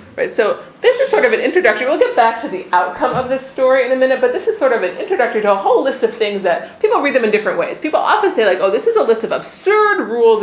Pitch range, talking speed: 190-285 Hz, 300 wpm